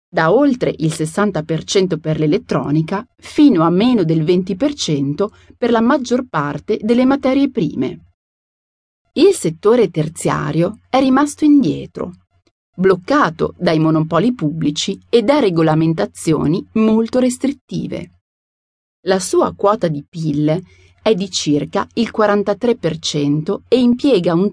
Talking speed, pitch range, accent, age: 115 wpm, 155-240 Hz, native, 30-49